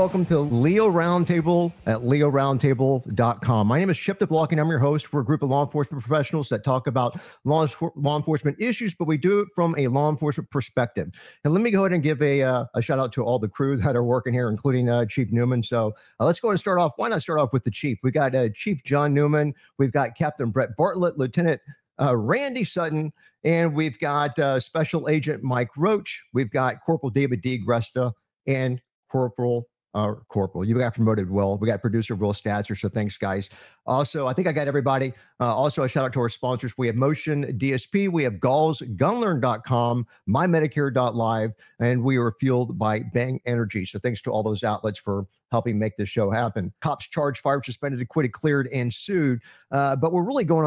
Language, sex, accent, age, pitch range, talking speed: English, male, American, 50-69, 120-155 Hz, 210 wpm